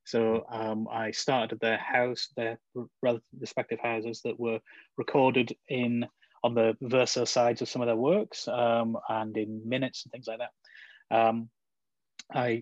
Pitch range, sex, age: 115-125 Hz, male, 30-49